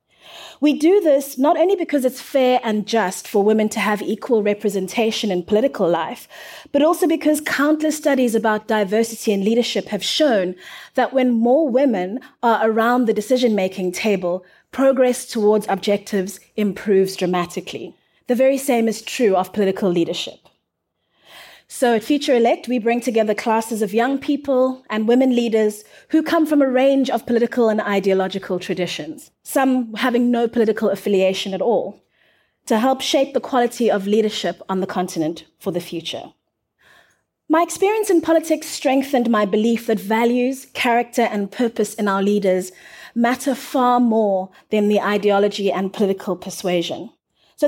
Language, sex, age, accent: English, female, 30-49, South African